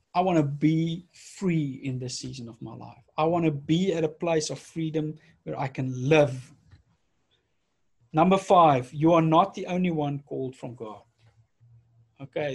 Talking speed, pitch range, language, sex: 170 wpm, 150-190 Hz, English, male